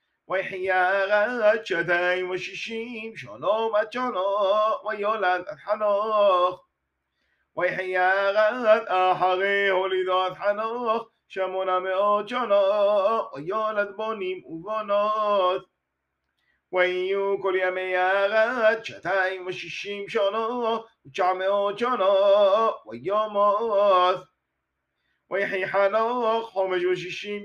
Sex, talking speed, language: male, 45 wpm, Hebrew